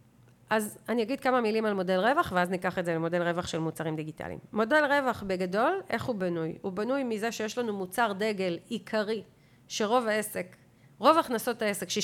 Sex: female